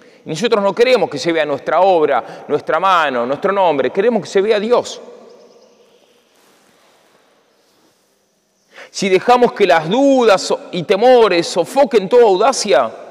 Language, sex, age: Spanish, male, 40-59